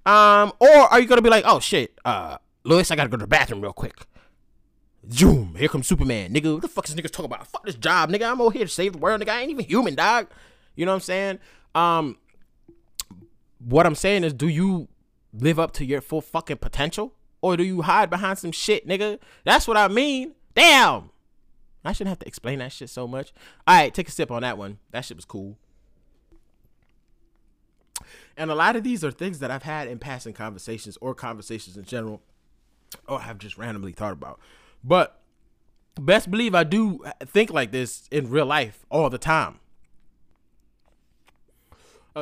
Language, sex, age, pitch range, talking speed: English, male, 20-39, 115-190 Hz, 195 wpm